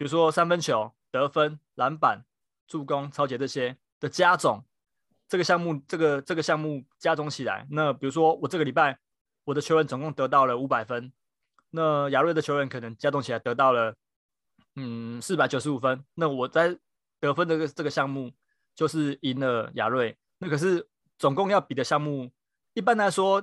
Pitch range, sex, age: 130-160 Hz, male, 20-39